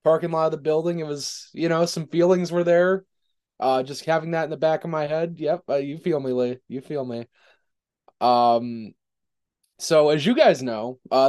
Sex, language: male, English